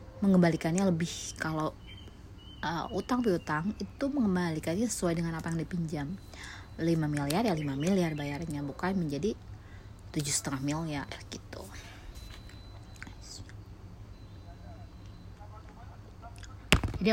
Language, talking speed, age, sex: Indonesian, 85 wpm, 20-39, female